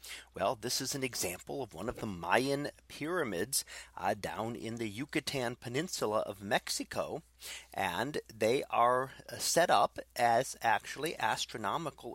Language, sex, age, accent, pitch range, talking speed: English, male, 40-59, American, 105-135 Hz, 135 wpm